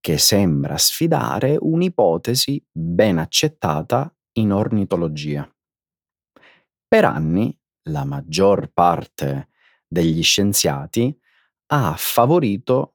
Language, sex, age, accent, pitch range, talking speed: Italian, male, 40-59, native, 80-130 Hz, 80 wpm